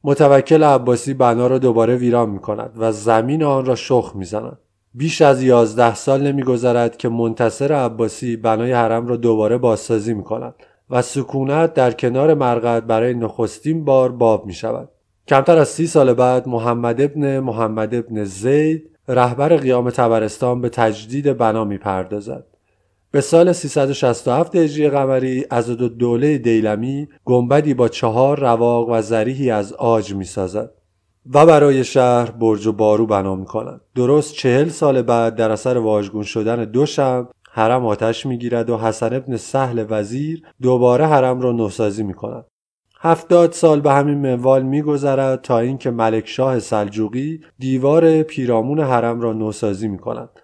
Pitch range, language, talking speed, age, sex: 115-140 Hz, Persian, 155 wpm, 30-49, male